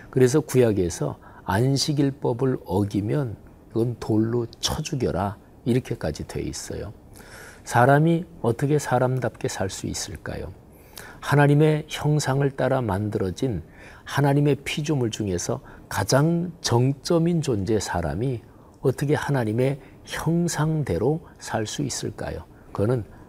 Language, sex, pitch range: Korean, male, 100-140 Hz